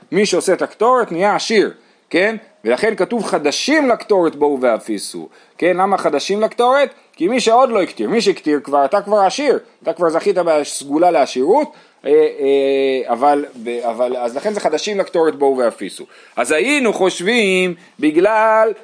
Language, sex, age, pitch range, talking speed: Hebrew, male, 30-49, 145-225 Hz, 140 wpm